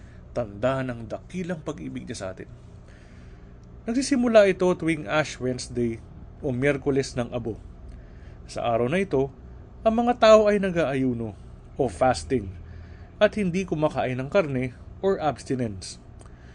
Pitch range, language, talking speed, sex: 120-180 Hz, Filipino, 125 wpm, male